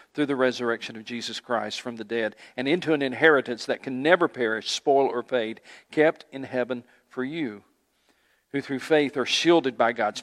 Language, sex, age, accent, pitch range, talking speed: English, male, 50-69, American, 120-155 Hz, 190 wpm